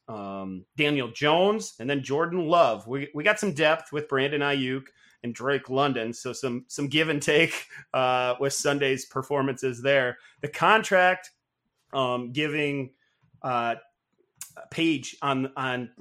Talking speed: 135 wpm